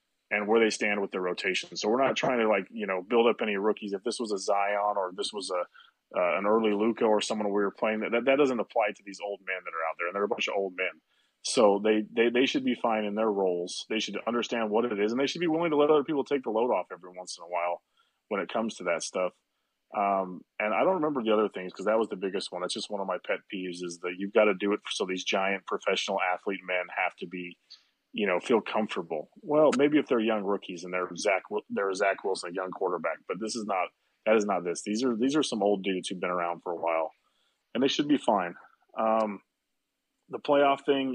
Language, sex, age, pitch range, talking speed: English, male, 30-49, 95-115 Hz, 265 wpm